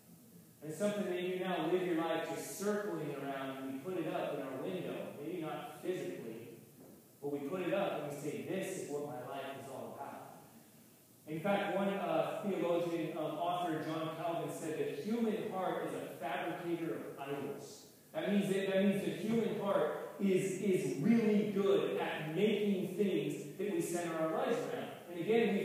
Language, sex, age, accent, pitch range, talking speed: English, male, 30-49, American, 170-215 Hz, 190 wpm